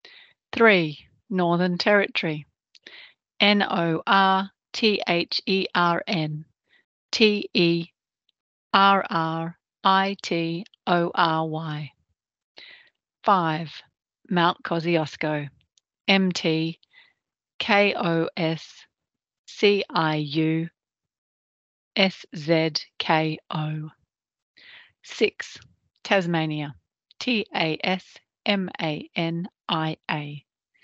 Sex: female